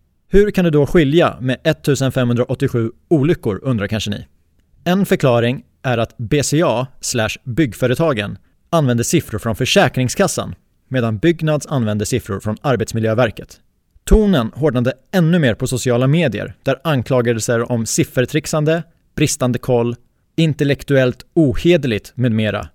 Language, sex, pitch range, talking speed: Swedish, male, 115-150 Hz, 115 wpm